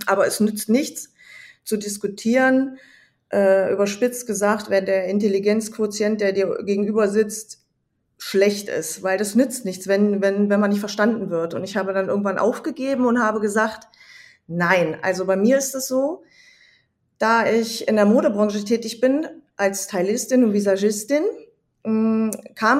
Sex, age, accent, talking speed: female, 30-49, German, 145 wpm